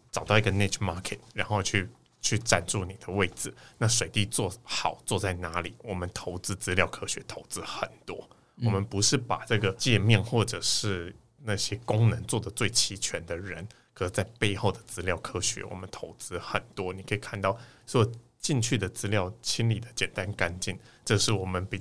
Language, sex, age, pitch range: Chinese, male, 20-39, 95-120 Hz